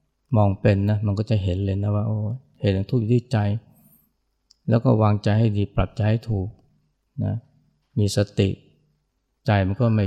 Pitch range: 100-115 Hz